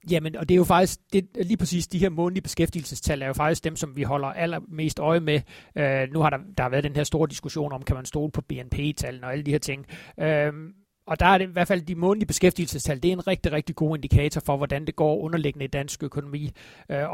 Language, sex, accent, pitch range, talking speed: Danish, male, native, 145-175 Hz, 255 wpm